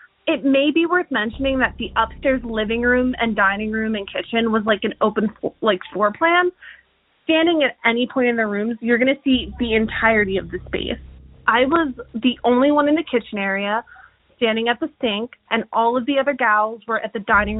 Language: English